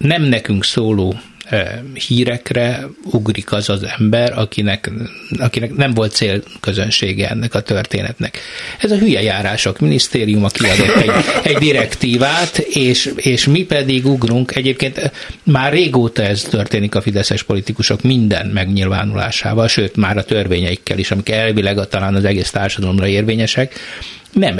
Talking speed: 130 wpm